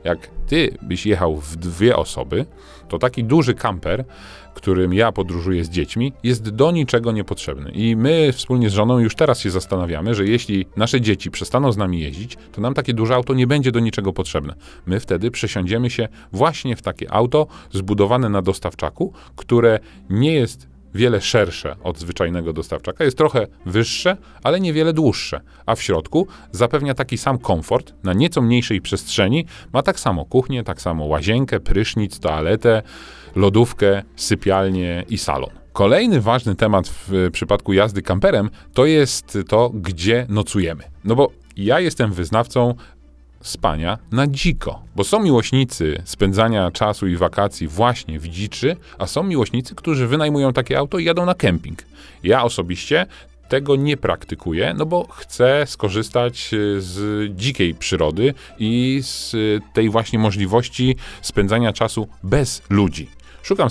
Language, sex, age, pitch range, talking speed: Polish, male, 40-59, 90-125 Hz, 150 wpm